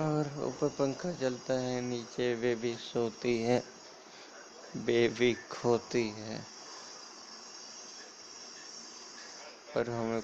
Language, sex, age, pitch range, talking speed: Hindi, male, 20-39, 115-145 Hz, 95 wpm